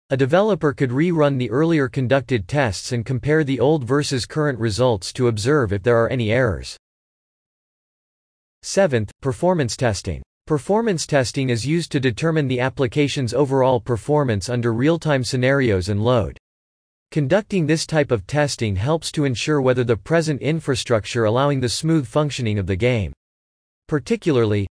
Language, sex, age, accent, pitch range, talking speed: English, male, 40-59, American, 110-150 Hz, 145 wpm